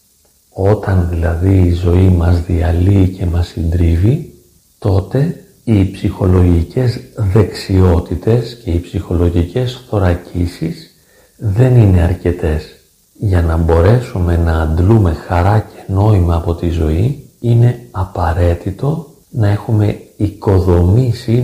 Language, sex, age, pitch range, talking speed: Greek, male, 40-59, 90-110 Hz, 100 wpm